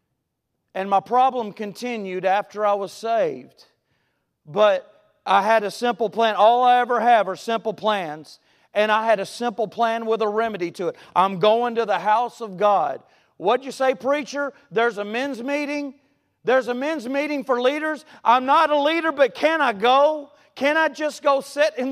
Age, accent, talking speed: 40-59, American, 185 wpm